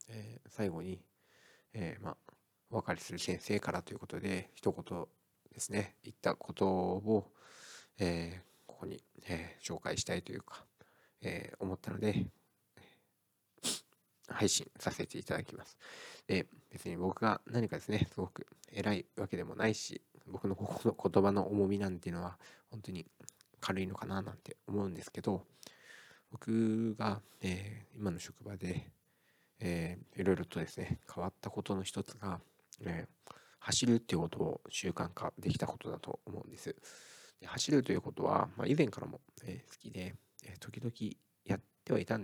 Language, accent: Japanese, native